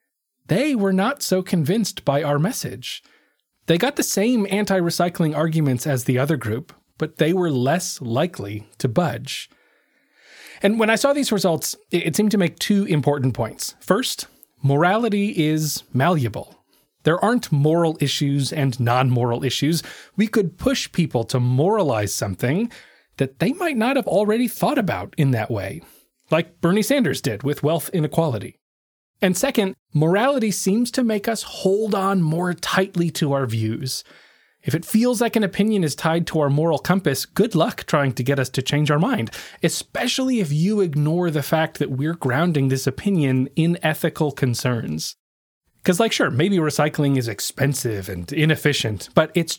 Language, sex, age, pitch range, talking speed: English, male, 30-49, 135-195 Hz, 165 wpm